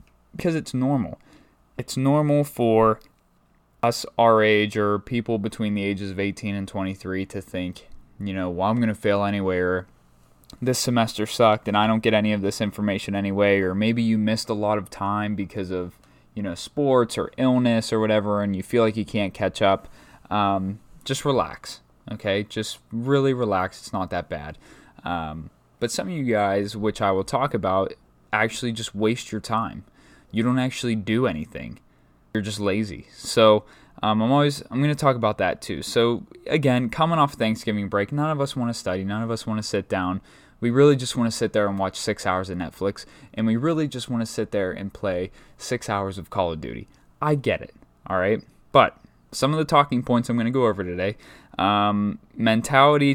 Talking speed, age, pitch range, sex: 200 wpm, 20-39, 100-120 Hz, male